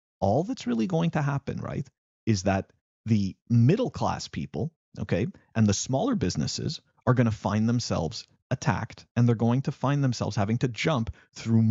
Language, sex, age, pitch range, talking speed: English, male, 30-49, 105-135 Hz, 175 wpm